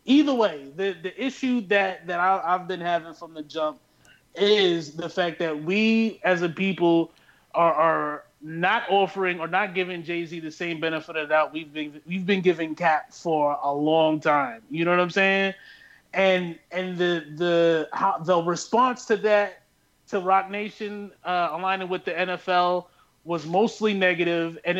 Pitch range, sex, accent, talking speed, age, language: 165-200 Hz, male, American, 175 wpm, 30-49, English